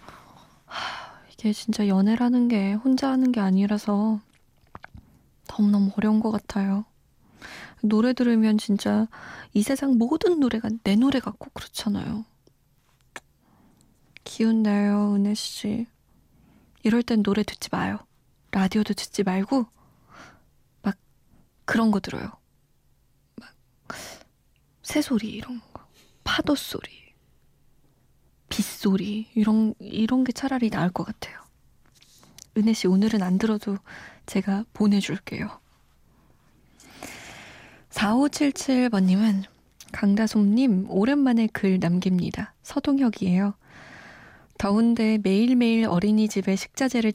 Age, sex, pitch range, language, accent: 20-39, female, 200-235 Hz, Korean, native